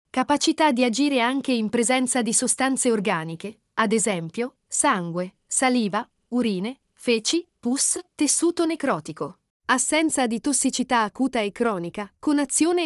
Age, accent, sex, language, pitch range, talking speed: 40-59, native, female, Italian, 210-275 Hz, 120 wpm